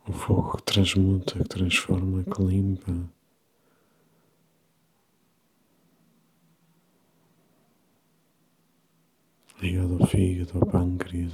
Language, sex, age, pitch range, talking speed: Portuguese, male, 50-69, 95-100 Hz, 70 wpm